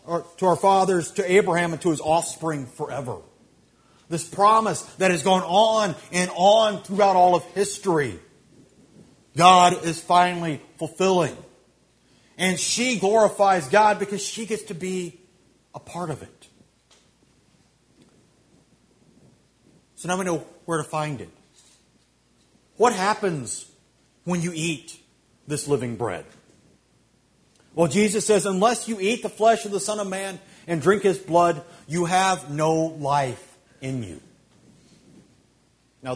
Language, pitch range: English, 160-205 Hz